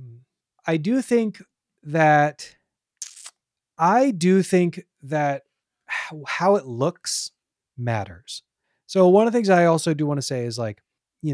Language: English